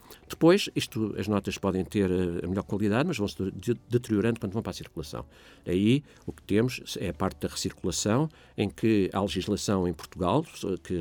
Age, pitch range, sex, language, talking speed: 50-69, 90-105 Hz, male, Portuguese, 175 wpm